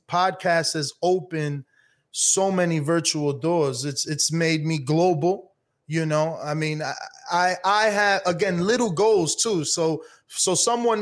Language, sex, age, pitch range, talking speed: English, male, 20-39, 160-210 Hz, 145 wpm